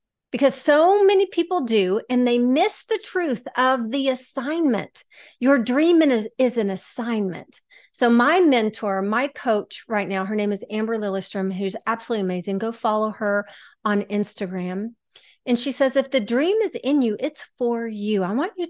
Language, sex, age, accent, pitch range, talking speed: English, female, 40-59, American, 215-280 Hz, 175 wpm